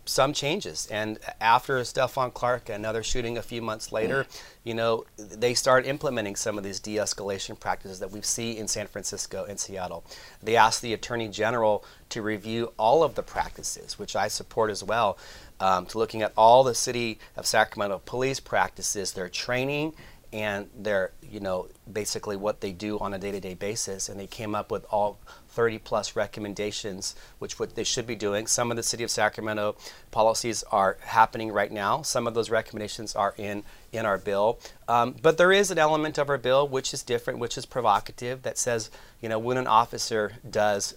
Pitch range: 105-120 Hz